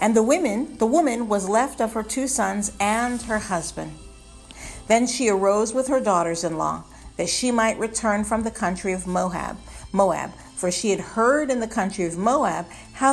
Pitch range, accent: 180-245 Hz, American